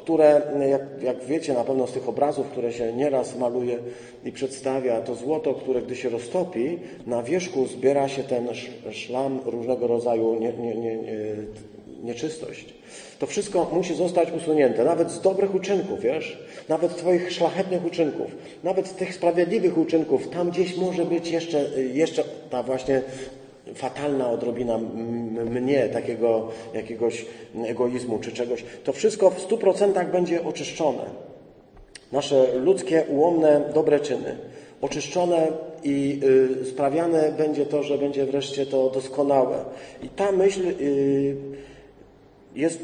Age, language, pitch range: 40-59, Polish, 120-165 Hz